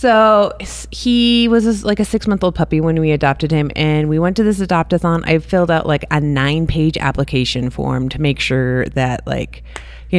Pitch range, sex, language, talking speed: 135-210 Hz, female, English, 185 wpm